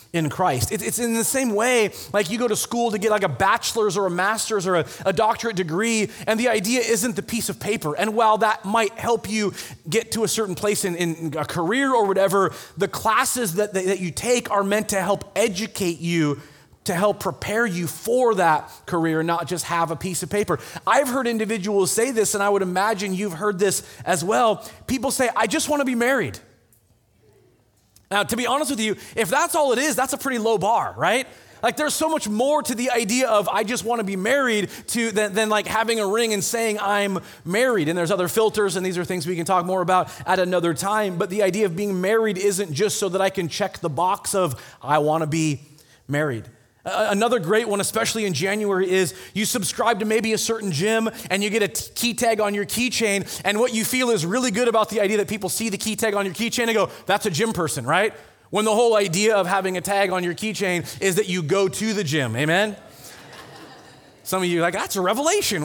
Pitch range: 180-225 Hz